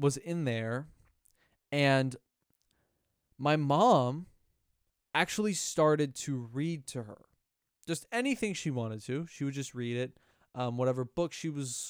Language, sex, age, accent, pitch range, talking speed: English, male, 20-39, American, 120-165 Hz, 135 wpm